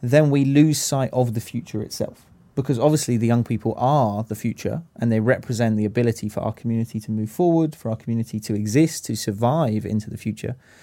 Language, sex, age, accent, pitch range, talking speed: English, male, 20-39, British, 110-130 Hz, 205 wpm